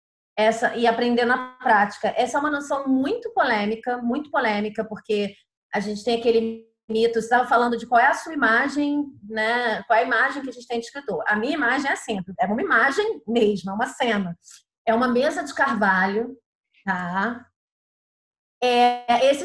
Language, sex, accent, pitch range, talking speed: Portuguese, female, Brazilian, 220-270 Hz, 180 wpm